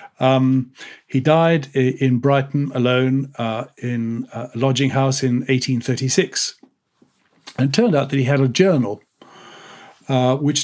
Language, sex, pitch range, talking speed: English, male, 120-140 Hz, 135 wpm